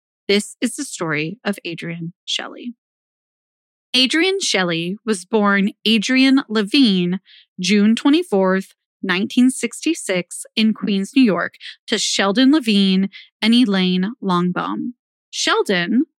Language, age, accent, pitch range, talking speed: English, 30-49, American, 190-255 Hz, 105 wpm